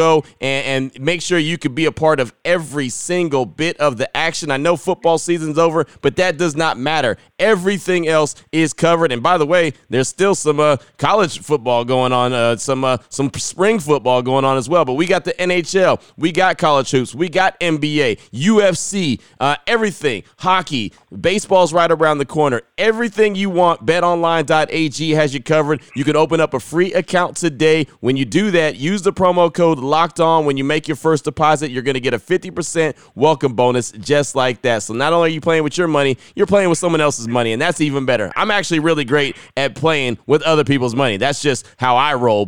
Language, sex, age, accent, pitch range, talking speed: English, male, 30-49, American, 135-170 Hz, 210 wpm